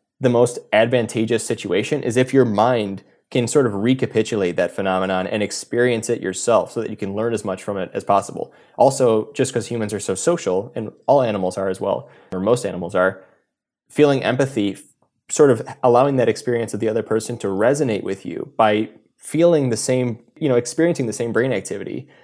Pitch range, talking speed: 100-130 Hz, 195 wpm